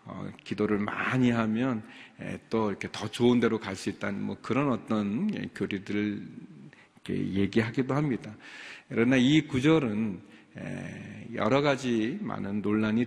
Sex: male